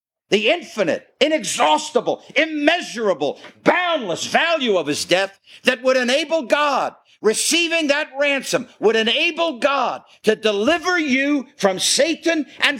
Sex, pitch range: male, 175-270 Hz